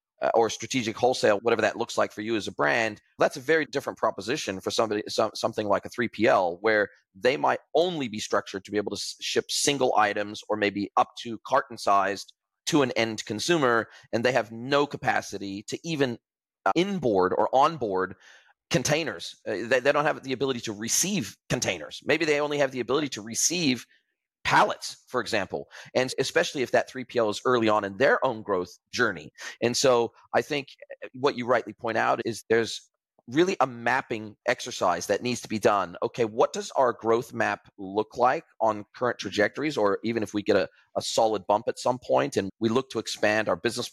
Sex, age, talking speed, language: male, 40-59, 195 wpm, English